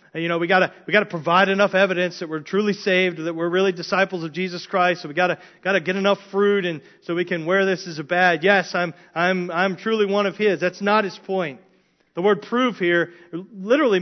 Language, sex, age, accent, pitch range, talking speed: English, male, 40-59, American, 165-200 Hz, 225 wpm